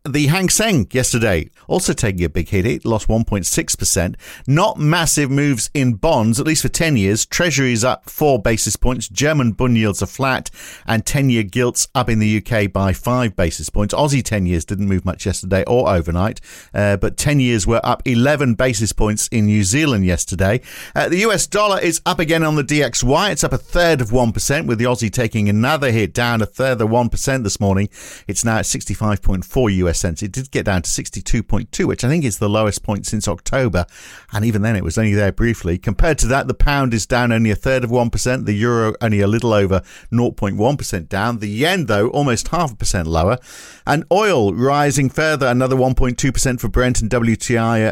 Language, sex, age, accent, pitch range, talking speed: English, male, 50-69, British, 105-130 Hz, 205 wpm